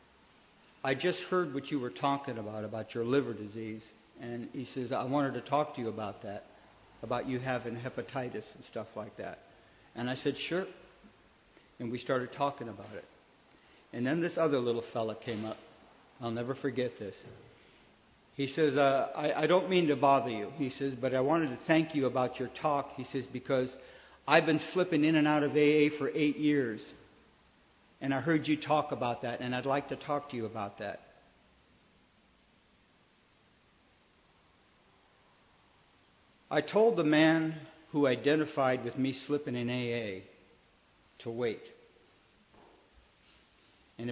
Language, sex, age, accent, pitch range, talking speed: English, male, 60-79, American, 115-145 Hz, 160 wpm